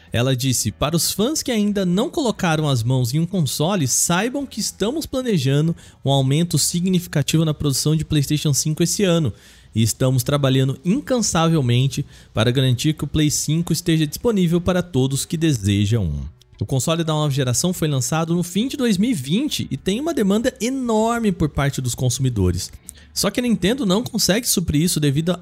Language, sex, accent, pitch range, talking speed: Portuguese, male, Brazilian, 130-190 Hz, 175 wpm